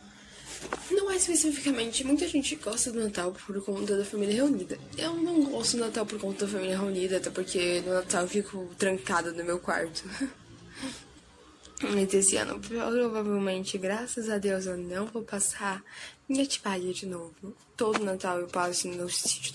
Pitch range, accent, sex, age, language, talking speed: 180-230 Hz, Brazilian, female, 10-29, Portuguese, 165 wpm